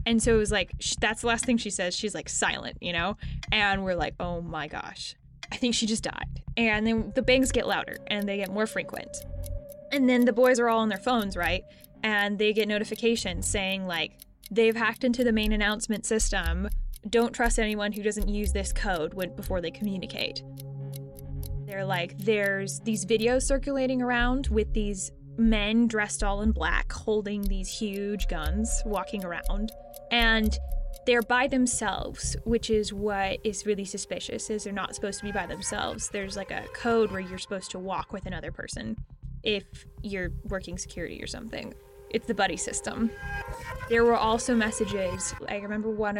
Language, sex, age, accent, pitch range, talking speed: English, female, 10-29, American, 190-230 Hz, 180 wpm